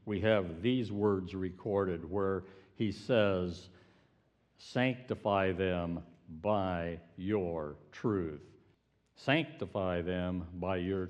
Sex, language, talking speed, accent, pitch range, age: male, English, 90 wpm, American, 95-140 Hz, 60-79